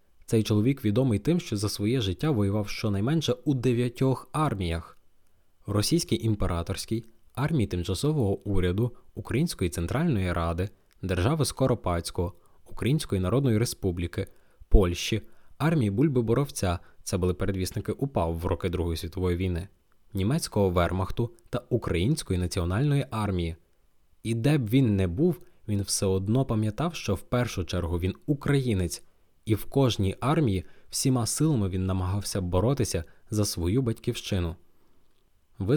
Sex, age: male, 20-39